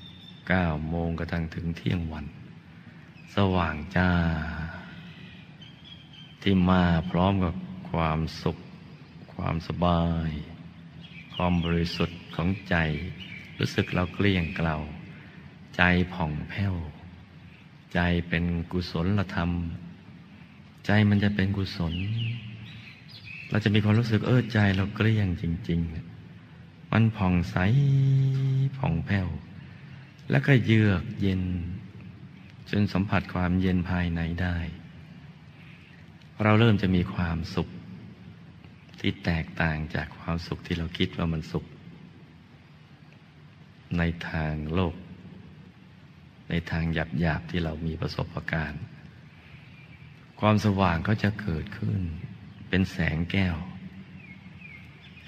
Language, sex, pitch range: Thai, male, 85-100 Hz